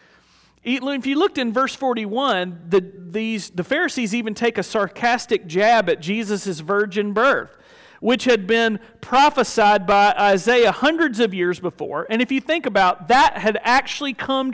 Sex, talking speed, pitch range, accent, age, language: male, 155 wpm, 180-245 Hz, American, 40-59, English